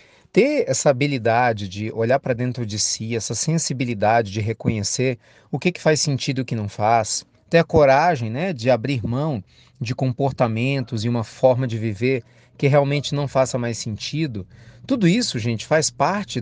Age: 40-59